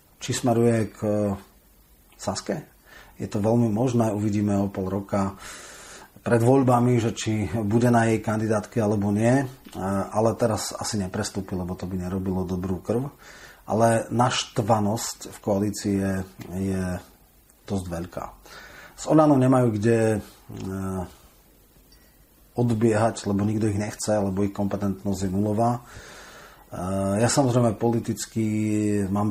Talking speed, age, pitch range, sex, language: 115 wpm, 30-49, 95-115 Hz, male, Slovak